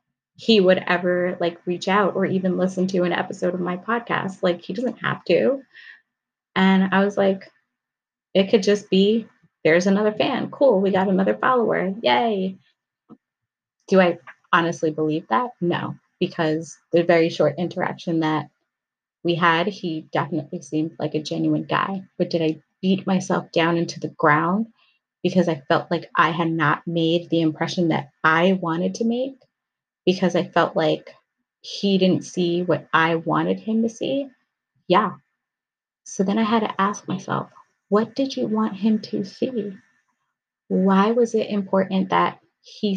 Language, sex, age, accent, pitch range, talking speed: English, female, 20-39, American, 170-205 Hz, 160 wpm